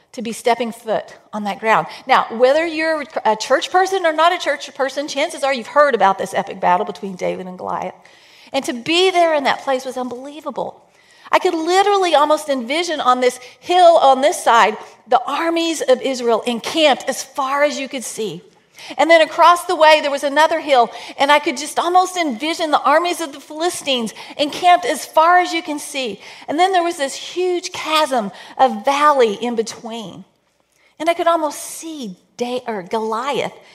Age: 40-59